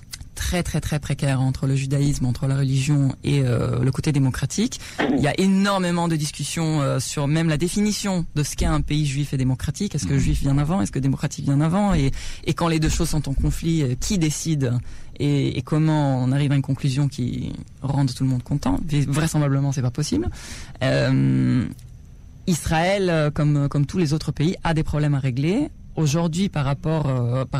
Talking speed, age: 200 wpm, 20-39